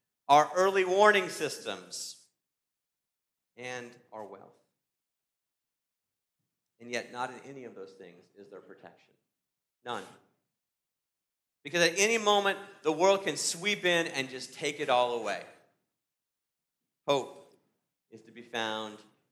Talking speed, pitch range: 120 wpm, 125-155 Hz